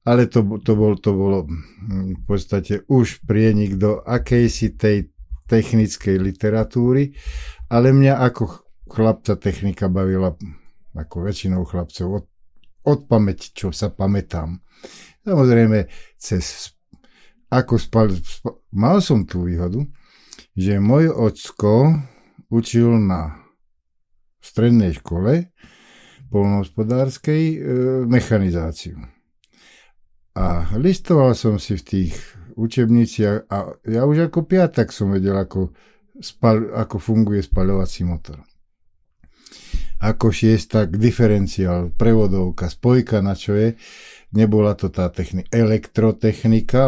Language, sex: Slovak, male